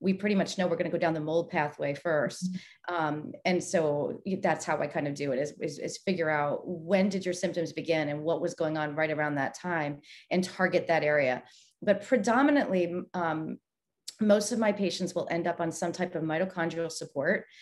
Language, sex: English, female